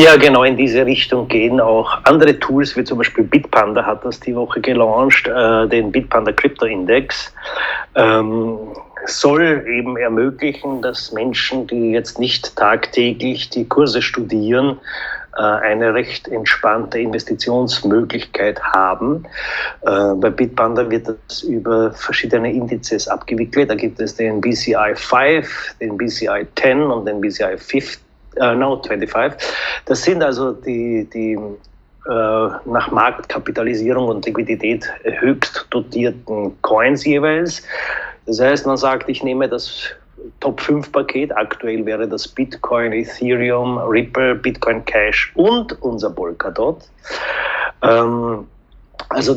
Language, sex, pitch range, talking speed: German, male, 115-135 Hz, 125 wpm